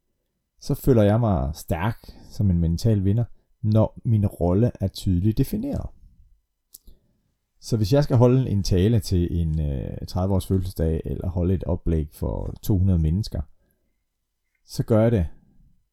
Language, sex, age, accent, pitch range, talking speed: Danish, male, 30-49, native, 85-110 Hz, 140 wpm